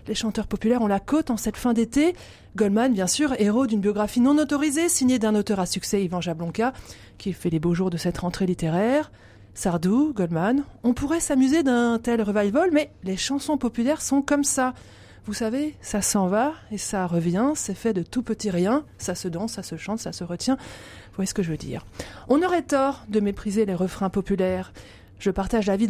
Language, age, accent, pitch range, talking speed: French, 30-49, French, 195-265 Hz, 210 wpm